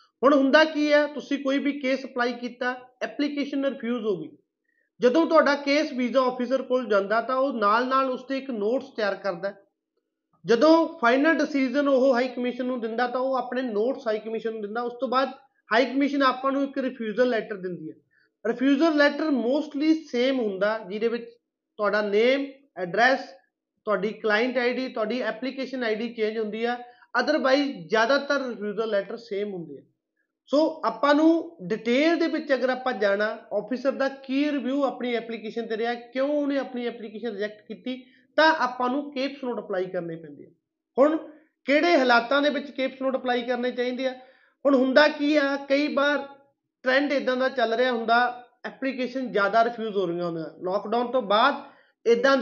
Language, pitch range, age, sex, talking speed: Punjabi, 225-275 Hz, 20-39, male, 145 wpm